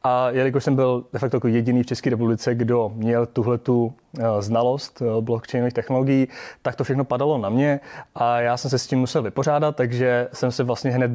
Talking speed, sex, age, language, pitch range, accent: 195 wpm, male, 30-49, Czech, 115-130 Hz, native